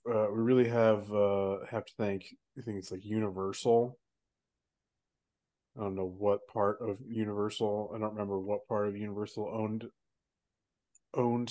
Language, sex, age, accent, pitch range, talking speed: English, male, 20-39, American, 105-120 Hz, 150 wpm